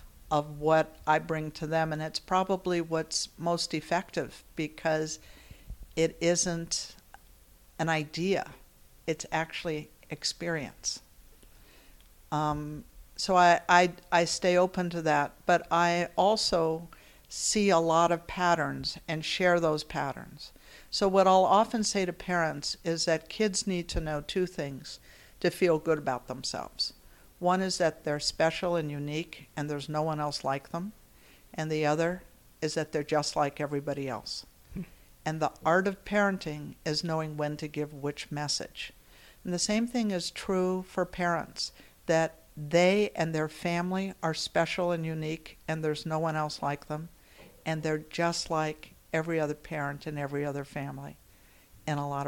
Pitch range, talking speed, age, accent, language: 150-175 Hz, 155 wpm, 60-79, American, English